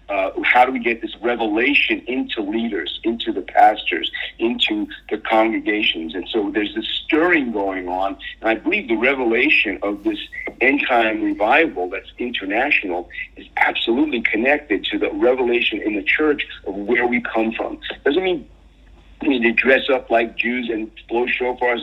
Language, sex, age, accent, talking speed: English, male, 50-69, American, 165 wpm